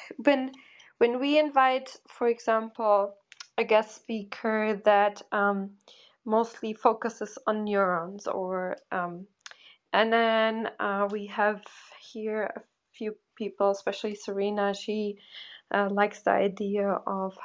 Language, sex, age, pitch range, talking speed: English, female, 20-39, 205-240 Hz, 115 wpm